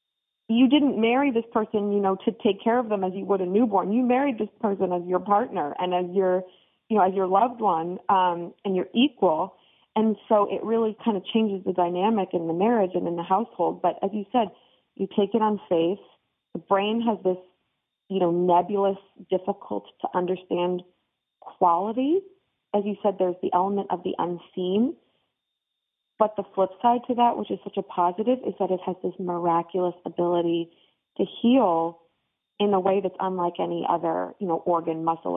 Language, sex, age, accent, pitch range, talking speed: English, female, 30-49, American, 175-210 Hz, 190 wpm